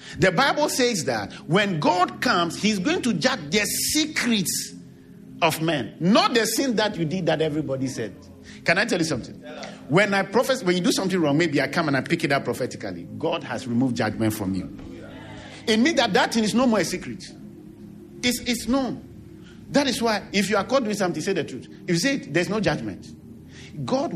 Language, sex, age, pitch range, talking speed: English, male, 50-69, 135-225 Hz, 210 wpm